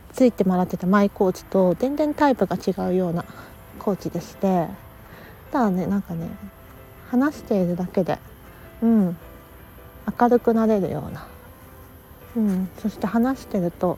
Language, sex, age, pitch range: Japanese, female, 40-59, 170-235 Hz